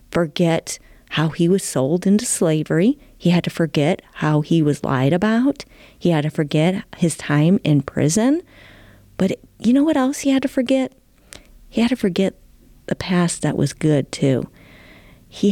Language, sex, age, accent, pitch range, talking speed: English, female, 40-59, American, 150-210 Hz, 170 wpm